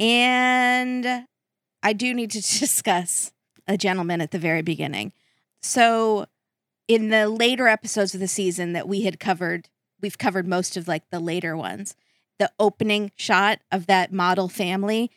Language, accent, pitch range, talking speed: English, American, 185-220 Hz, 155 wpm